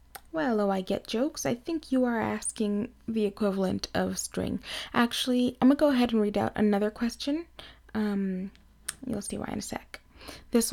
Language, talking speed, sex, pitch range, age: English, 180 wpm, female, 195-240 Hz, 20-39